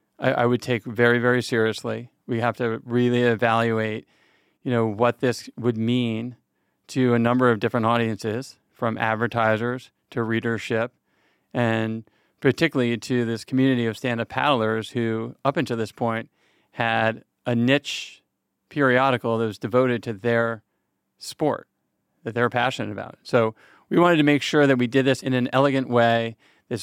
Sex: male